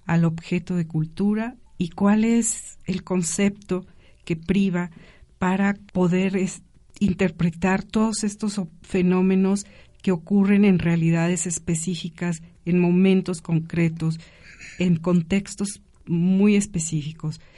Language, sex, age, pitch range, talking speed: Spanish, female, 50-69, 170-200 Hz, 100 wpm